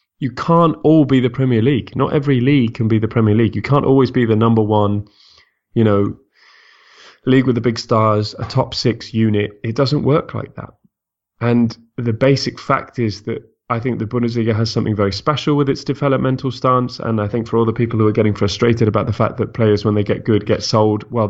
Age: 20-39